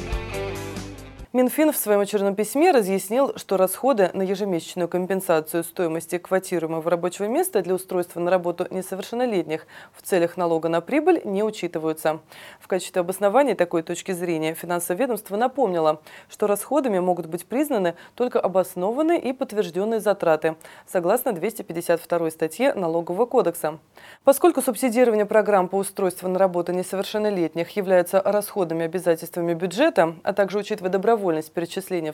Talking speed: 125 wpm